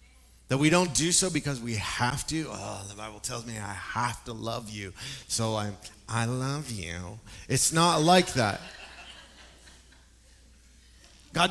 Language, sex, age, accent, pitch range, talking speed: English, male, 30-49, American, 100-170 Hz, 150 wpm